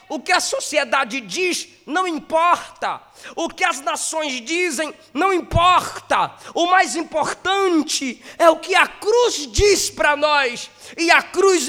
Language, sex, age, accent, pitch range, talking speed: English, male, 20-39, Brazilian, 200-325 Hz, 145 wpm